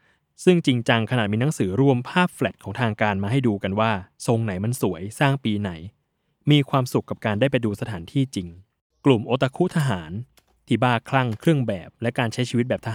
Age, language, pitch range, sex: 20-39, Thai, 105-135 Hz, male